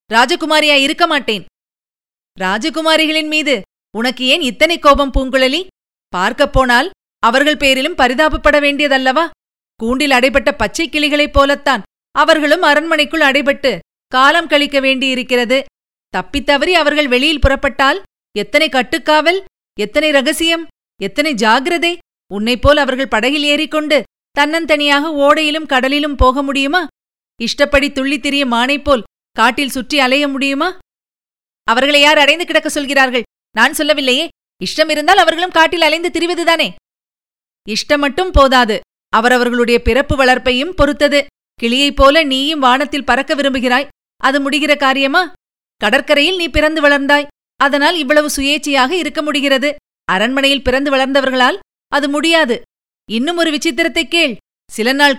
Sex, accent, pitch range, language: female, native, 265-305 Hz, Tamil